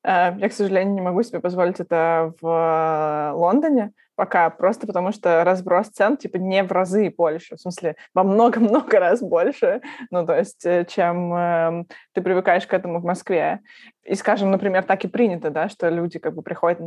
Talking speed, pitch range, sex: 180 wpm, 175-210 Hz, female